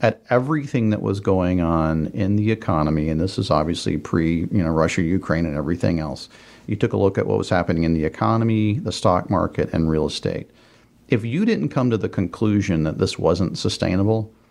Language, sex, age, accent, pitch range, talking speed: English, male, 40-59, American, 90-115 Hz, 205 wpm